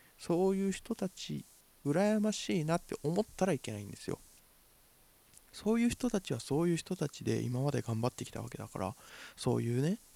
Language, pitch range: Japanese, 115-155 Hz